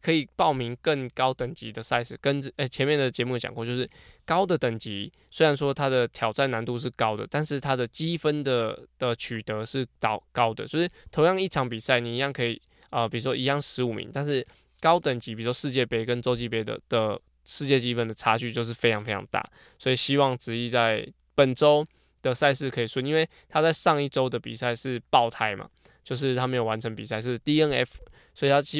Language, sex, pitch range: Chinese, male, 115-140 Hz